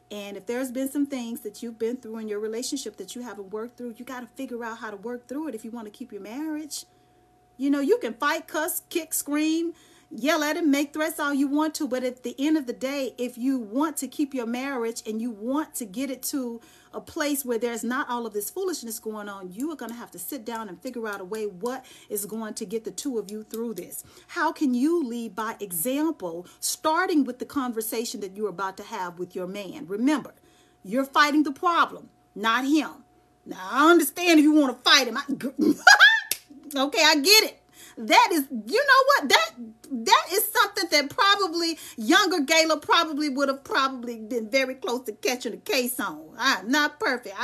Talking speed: 220 wpm